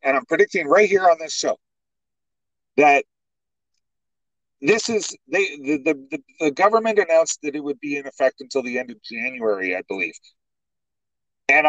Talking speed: 150 wpm